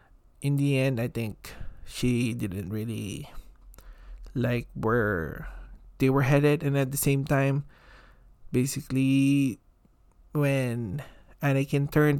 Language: Filipino